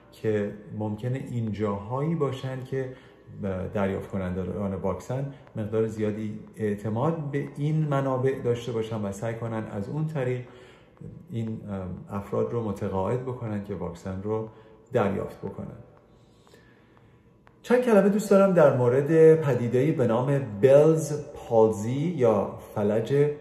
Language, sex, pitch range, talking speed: Persian, male, 100-145 Hz, 125 wpm